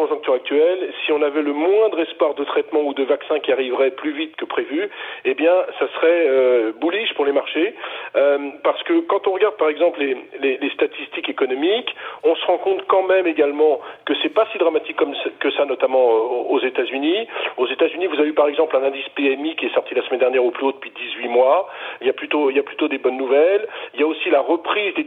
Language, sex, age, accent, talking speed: French, male, 40-59, French, 240 wpm